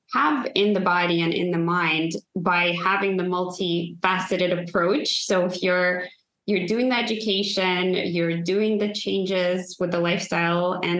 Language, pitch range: English, 175-200 Hz